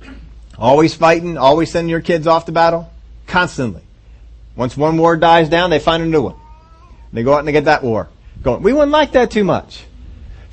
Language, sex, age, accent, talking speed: English, male, 40-59, American, 205 wpm